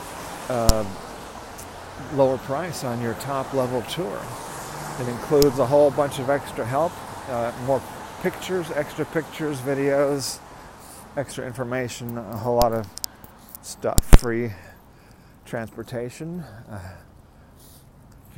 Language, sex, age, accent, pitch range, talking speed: English, male, 40-59, American, 110-140 Hz, 105 wpm